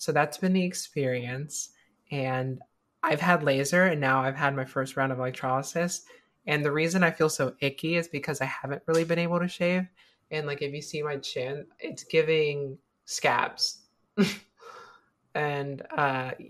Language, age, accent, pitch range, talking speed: English, 20-39, American, 130-155 Hz, 165 wpm